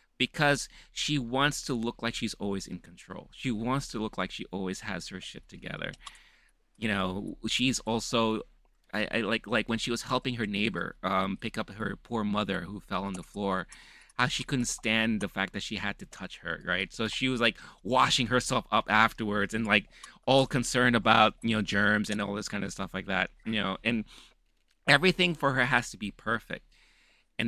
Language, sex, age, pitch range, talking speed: English, male, 30-49, 100-115 Hz, 205 wpm